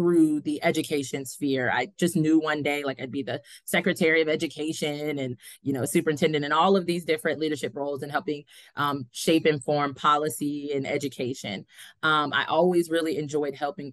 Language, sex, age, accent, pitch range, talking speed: English, female, 20-39, American, 145-170 Hz, 180 wpm